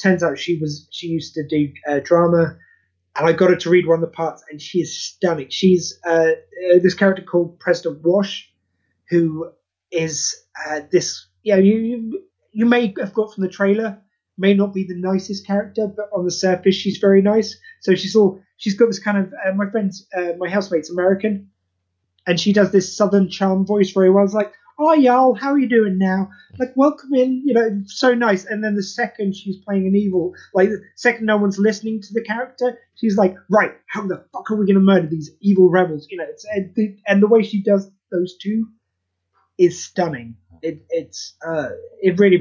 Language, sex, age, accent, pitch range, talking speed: English, male, 30-49, British, 170-210 Hz, 205 wpm